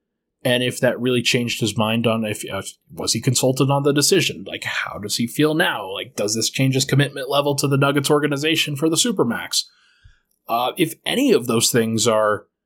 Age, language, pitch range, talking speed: 20-39, English, 125-155 Hz, 205 wpm